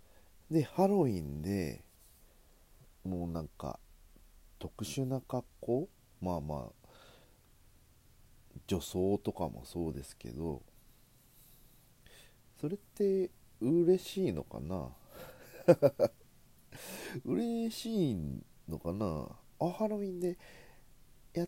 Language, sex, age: Japanese, male, 40-59